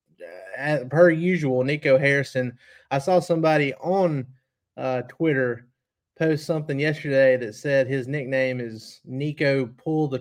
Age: 30-49